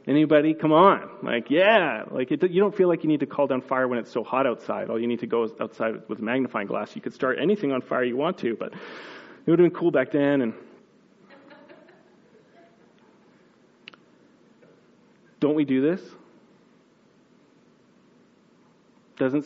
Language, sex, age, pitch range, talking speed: English, male, 30-49, 115-145 Hz, 165 wpm